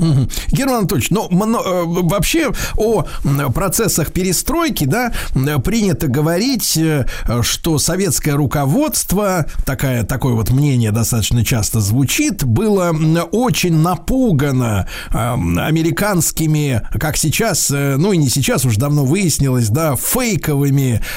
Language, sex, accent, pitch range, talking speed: Russian, male, native, 125-180 Hz, 100 wpm